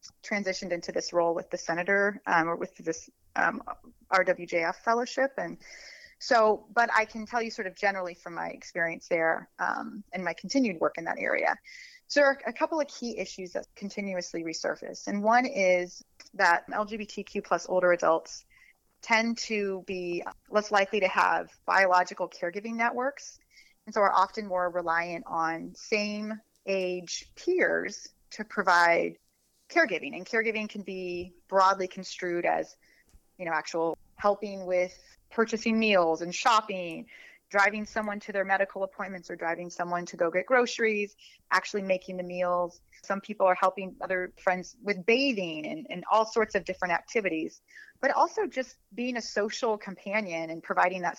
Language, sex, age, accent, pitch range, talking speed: English, female, 30-49, American, 180-220 Hz, 160 wpm